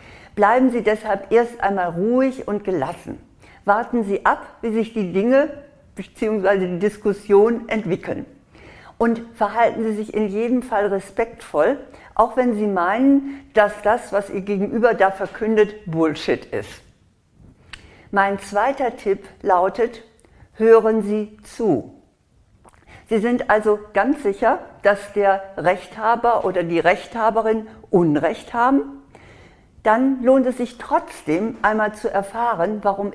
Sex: female